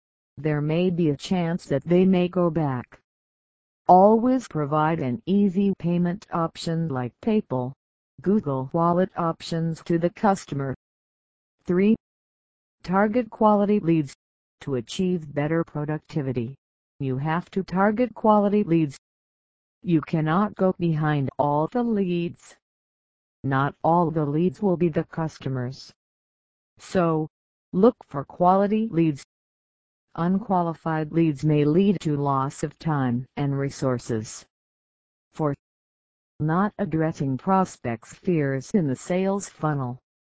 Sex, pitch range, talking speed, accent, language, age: female, 135-185 Hz, 115 wpm, American, English, 50-69